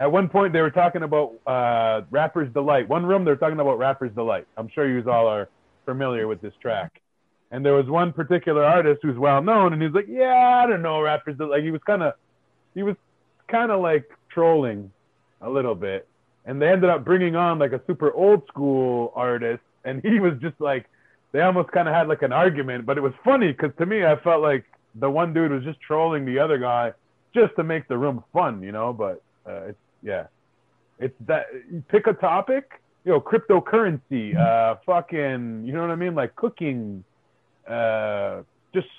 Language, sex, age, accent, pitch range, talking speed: English, male, 30-49, American, 120-170 Hz, 205 wpm